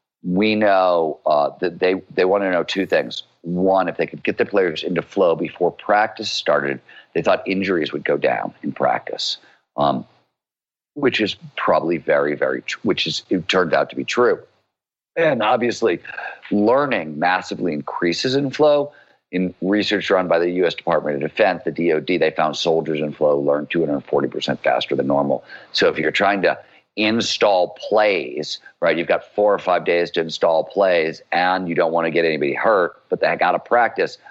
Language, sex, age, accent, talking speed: English, male, 50-69, American, 180 wpm